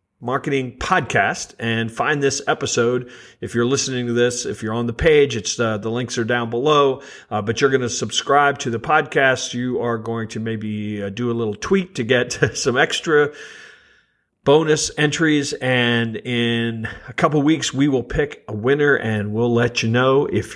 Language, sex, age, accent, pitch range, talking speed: English, male, 50-69, American, 110-135 Hz, 185 wpm